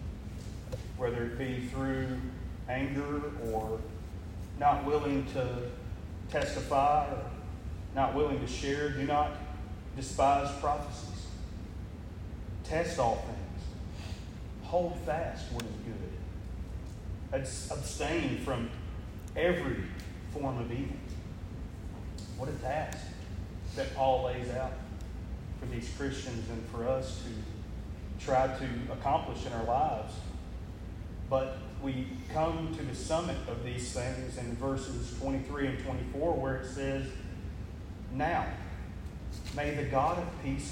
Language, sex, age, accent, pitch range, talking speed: English, male, 30-49, American, 90-135 Hz, 110 wpm